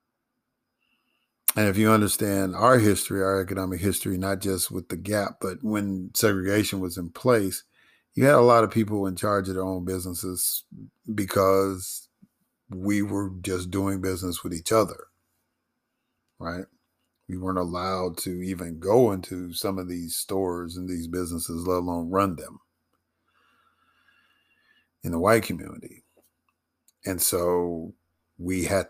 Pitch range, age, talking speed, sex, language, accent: 85-100 Hz, 50-69, 140 wpm, male, English, American